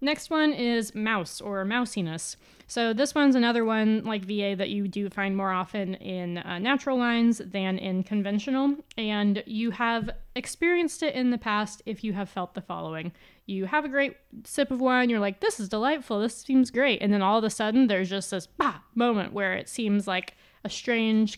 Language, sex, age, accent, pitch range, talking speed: English, female, 20-39, American, 190-230 Hz, 200 wpm